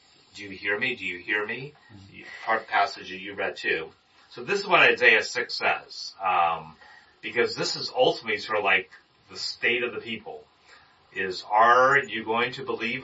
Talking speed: 185 wpm